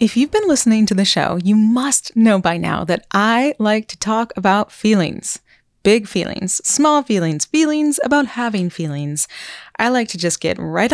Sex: female